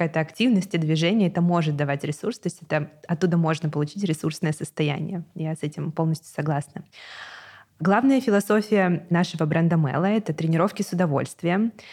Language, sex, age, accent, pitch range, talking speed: Russian, female, 20-39, native, 155-190 Hz, 155 wpm